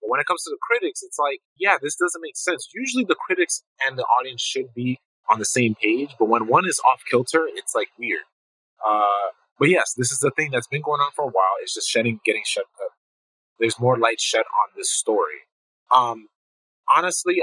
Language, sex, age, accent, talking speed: English, male, 20-39, American, 215 wpm